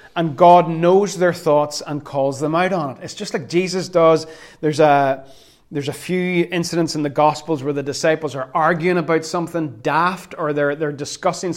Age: 30-49